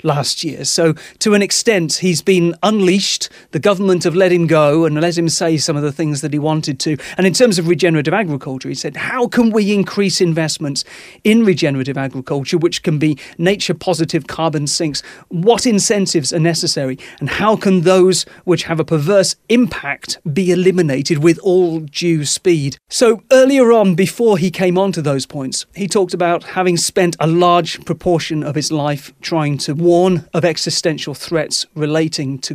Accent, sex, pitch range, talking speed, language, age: British, male, 150-185 Hz, 180 wpm, English, 30-49